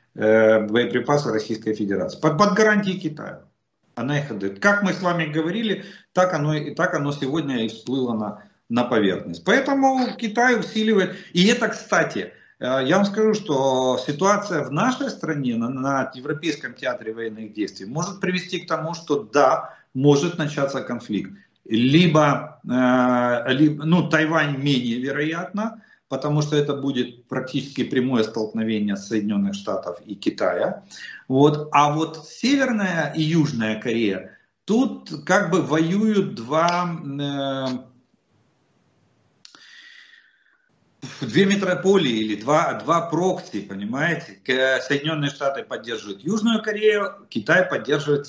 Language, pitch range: Russian, 125-185 Hz